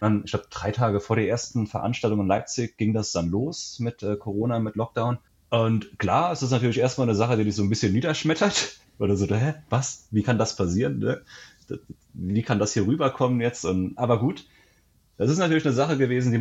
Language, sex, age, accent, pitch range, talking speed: German, male, 30-49, German, 95-120 Hz, 210 wpm